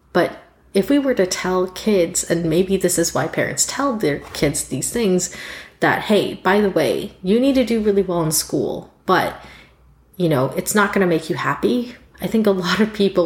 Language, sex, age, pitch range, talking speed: English, female, 30-49, 155-195 Hz, 215 wpm